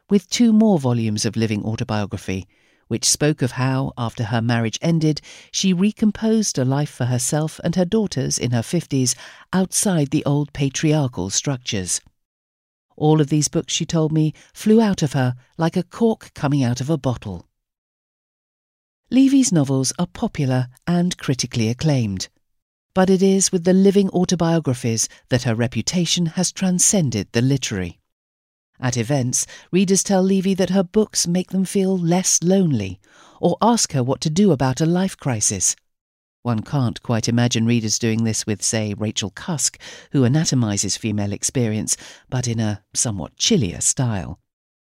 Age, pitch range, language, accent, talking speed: 50-69, 120-180 Hz, English, British, 155 wpm